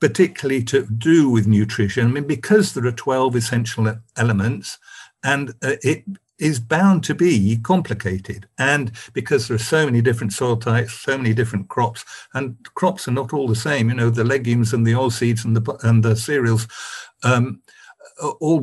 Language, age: English, 50-69